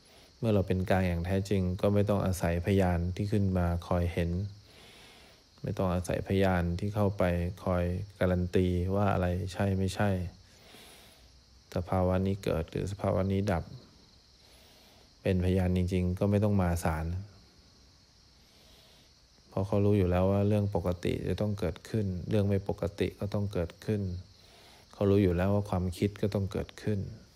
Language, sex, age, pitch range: English, male, 20-39, 90-100 Hz